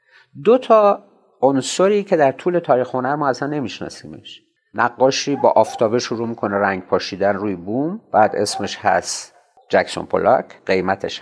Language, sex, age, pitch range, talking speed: Persian, male, 50-69, 120-180 Hz, 140 wpm